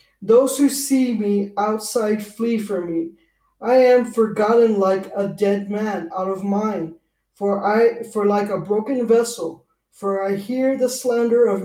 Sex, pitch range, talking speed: male, 200-240 Hz, 155 wpm